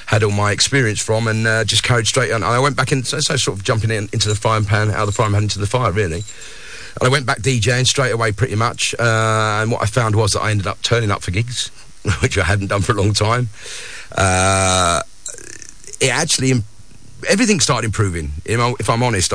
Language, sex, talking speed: English, male, 240 wpm